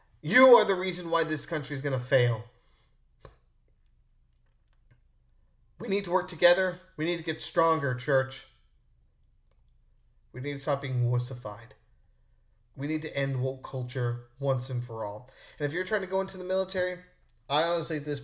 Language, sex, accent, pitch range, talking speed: English, male, American, 120-150 Hz, 170 wpm